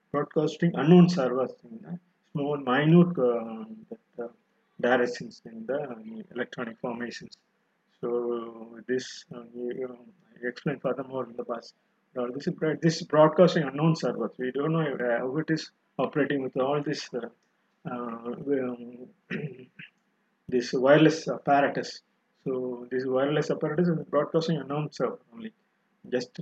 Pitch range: 125-180 Hz